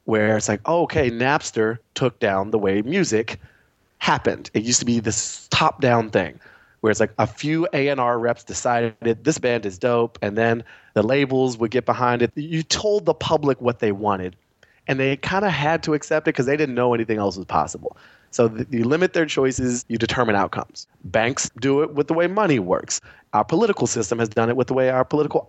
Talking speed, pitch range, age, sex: 210 wpm, 110-140 Hz, 30-49, male